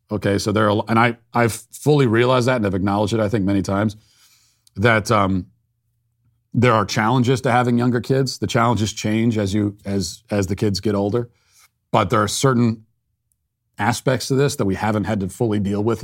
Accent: American